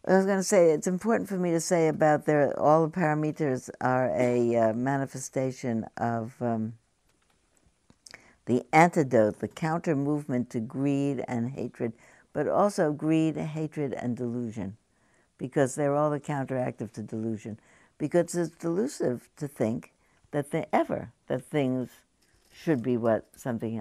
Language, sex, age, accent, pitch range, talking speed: English, female, 60-79, American, 120-170 Hz, 145 wpm